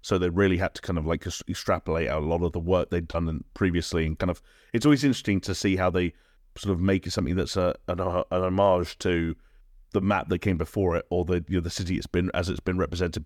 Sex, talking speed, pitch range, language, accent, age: male, 260 wpm, 85-100 Hz, English, British, 30-49